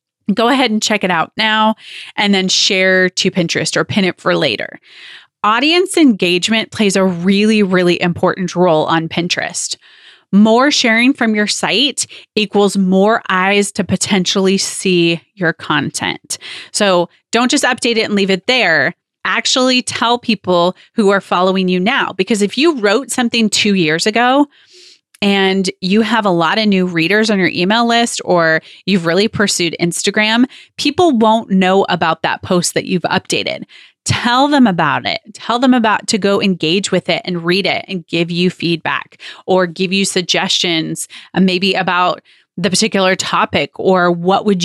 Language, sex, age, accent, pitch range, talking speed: English, female, 30-49, American, 175-220 Hz, 165 wpm